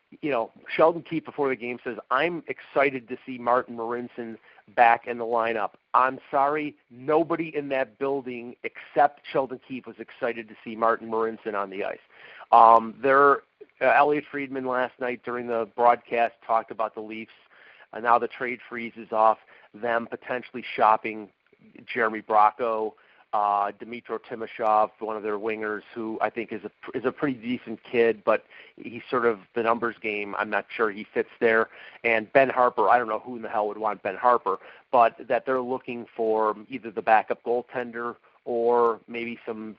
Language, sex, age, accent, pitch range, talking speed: English, male, 40-59, American, 110-125 Hz, 185 wpm